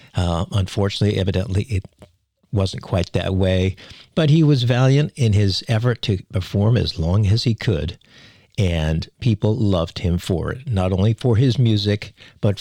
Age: 60-79